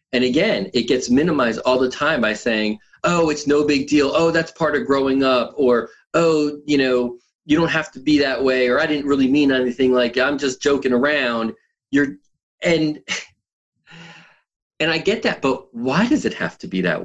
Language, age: English, 40-59